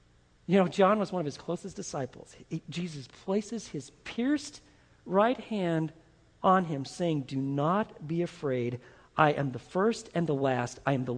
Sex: male